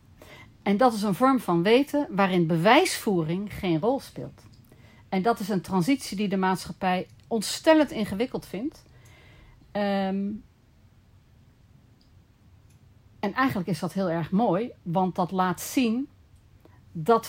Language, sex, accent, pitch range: Dutch, female, Dutch, 175-240 Hz